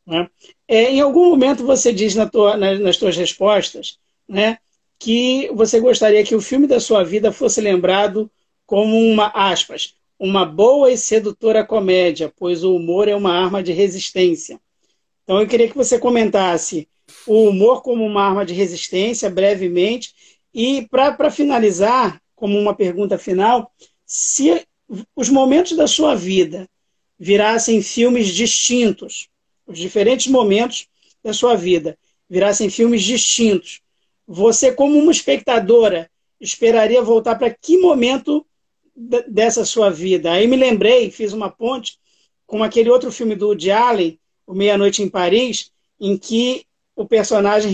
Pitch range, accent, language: 195-245 Hz, Brazilian, Portuguese